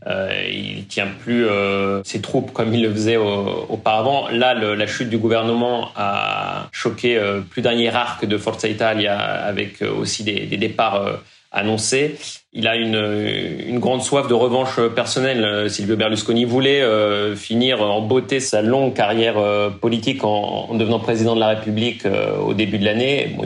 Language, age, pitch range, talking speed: French, 30-49, 105-120 Hz, 175 wpm